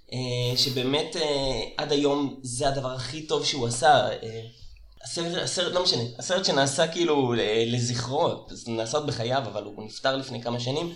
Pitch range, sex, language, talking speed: 125-165 Hz, male, Hebrew, 155 wpm